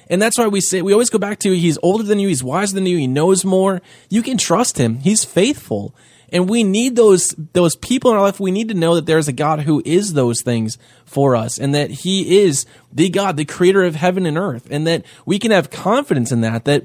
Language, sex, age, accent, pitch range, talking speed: English, male, 20-39, American, 150-195 Hz, 255 wpm